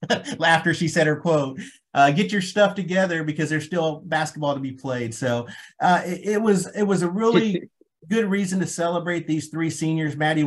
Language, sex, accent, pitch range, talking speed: English, male, American, 130-160 Hz, 195 wpm